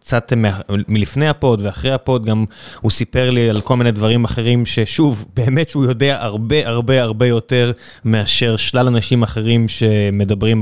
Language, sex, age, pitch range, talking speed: Hebrew, male, 20-39, 110-140 Hz, 155 wpm